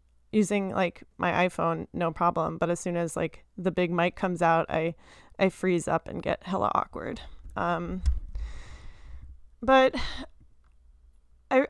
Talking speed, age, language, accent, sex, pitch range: 140 wpm, 20-39, English, American, female, 165-195 Hz